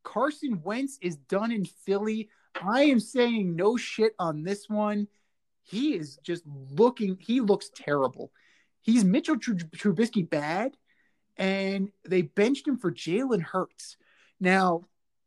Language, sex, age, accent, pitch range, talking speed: English, male, 30-49, American, 175-225 Hz, 130 wpm